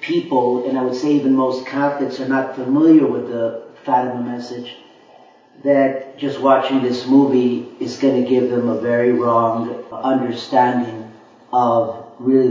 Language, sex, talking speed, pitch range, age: English, male, 150 wpm, 120-135 Hz, 40-59